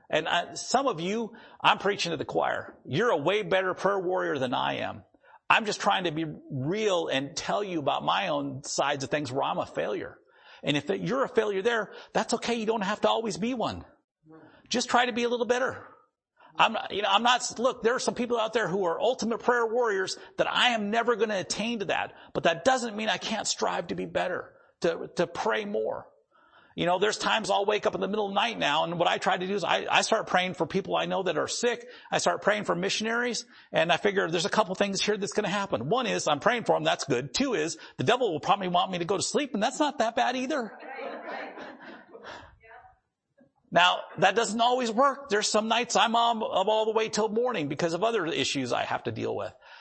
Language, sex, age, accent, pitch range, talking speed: English, male, 50-69, American, 190-240 Hz, 240 wpm